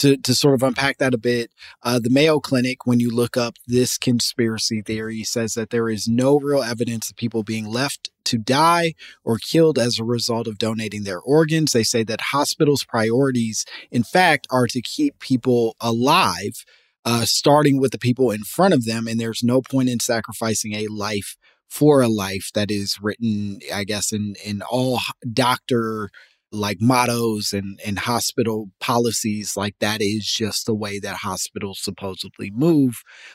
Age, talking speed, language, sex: 30-49, 175 wpm, English, male